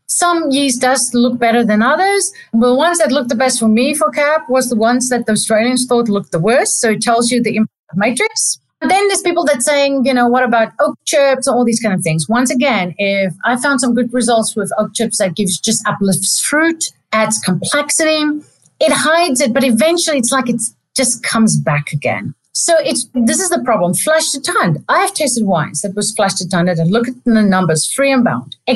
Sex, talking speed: female, 230 wpm